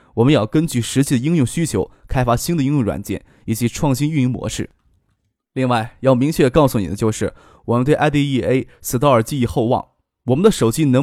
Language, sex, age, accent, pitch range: Chinese, male, 20-39, native, 115-150 Hz